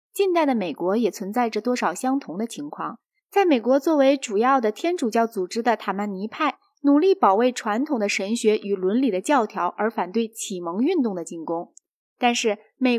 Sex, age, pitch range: female, 20-39, 200-280 Hz